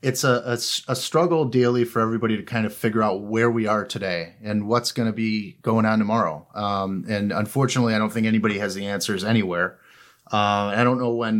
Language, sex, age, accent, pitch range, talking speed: English, male, 30-49, American, 110-130 Hz, 215 wpm